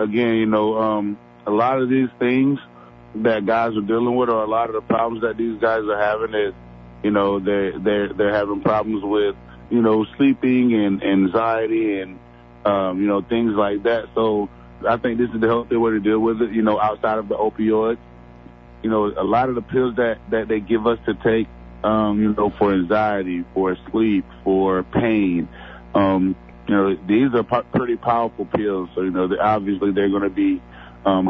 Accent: American